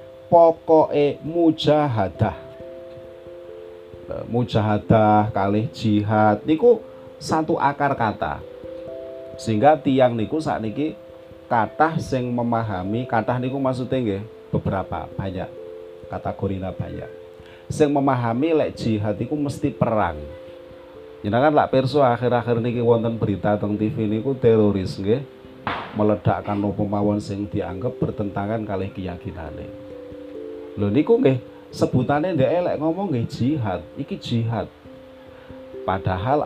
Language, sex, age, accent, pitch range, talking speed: Indonesian, male, 40-59, native, 105-135 Hz, 105 wpm